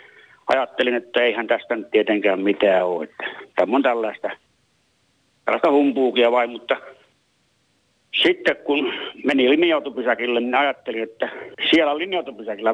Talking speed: 115 wpm